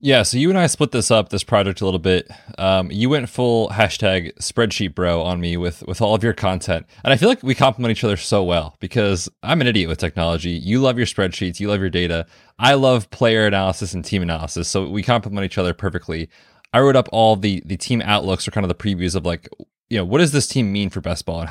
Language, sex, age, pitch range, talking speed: English, male, 20-39, 90-115 Hz, 255 wpm